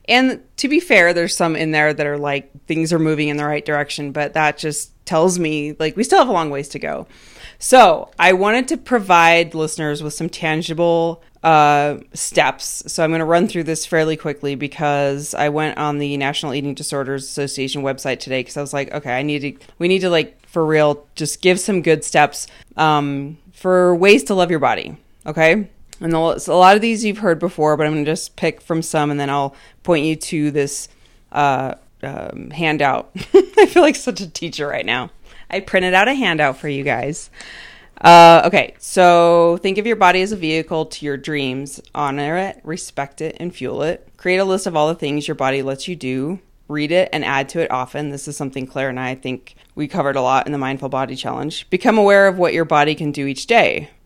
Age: 30-49